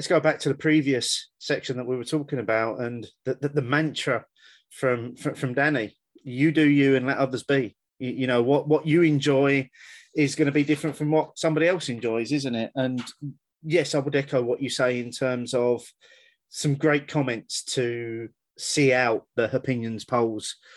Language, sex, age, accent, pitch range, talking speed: English, male, 30-49, British, 120-150 Hz, 195 wpm